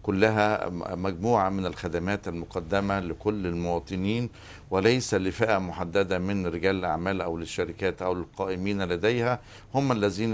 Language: Arabic